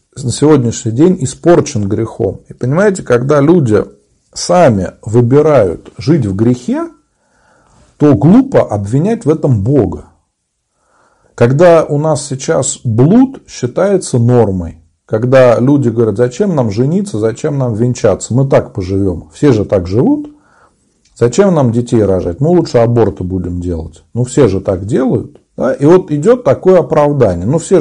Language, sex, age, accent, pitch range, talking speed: Russian, male, 40-59, native, 115-175 Hz, 140 wpm